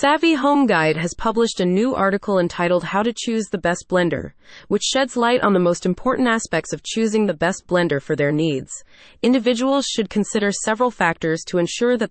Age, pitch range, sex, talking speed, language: 30-49, 170-225 Hz, female, 195 wpm, English